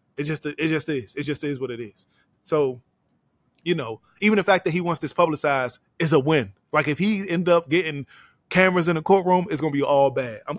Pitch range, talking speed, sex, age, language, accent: 145-180 Hz, 230 wpm, male, 20-39, English, American